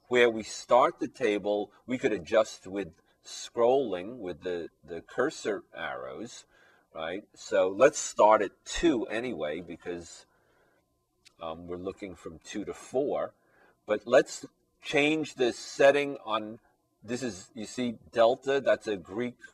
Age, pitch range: 40-59, 90-125 Hz